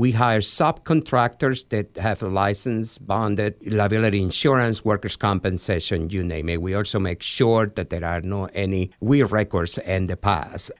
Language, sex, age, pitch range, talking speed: English, male, 50-69, 95-125 Hz, 155 wpm